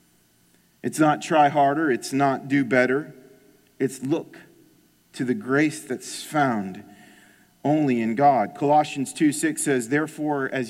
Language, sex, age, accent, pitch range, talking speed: English, male, 40-59, American, 120-175 Hz, 130 wpm